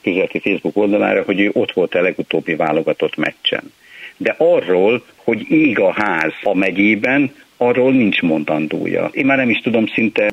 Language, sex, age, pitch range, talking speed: Hungarian, male, 60-79, 90-120 Hz, 165 wpm